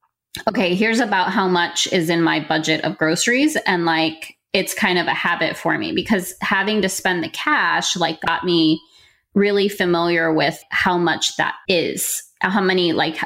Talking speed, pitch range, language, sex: 175 wpm, 165-215 Hz, English, female